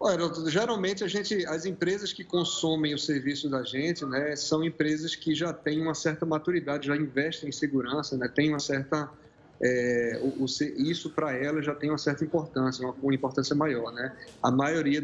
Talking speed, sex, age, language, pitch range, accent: 190 wpm, male, 20-39, Portuguese, 140-165 Hz, Brazilian